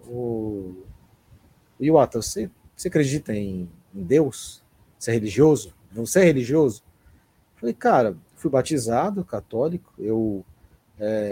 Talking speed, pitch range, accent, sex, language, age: 110 wpm, 120-175 Hz, Brazilian, male, Portuguese, 30-49